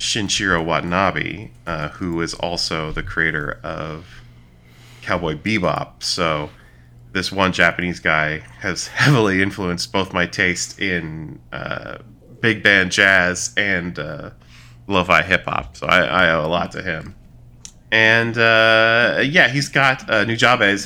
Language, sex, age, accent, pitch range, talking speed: English, male, 20-39, American, 75-110 Hz, 130 wpm